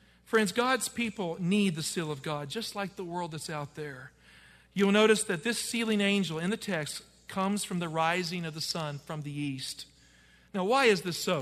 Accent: American